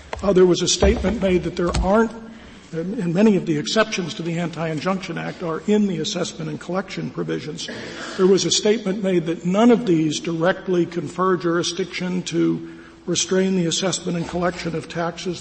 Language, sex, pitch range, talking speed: English, male, 165-195 Hz, 175 wpm